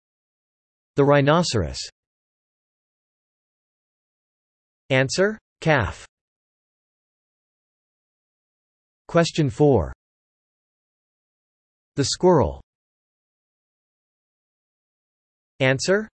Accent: American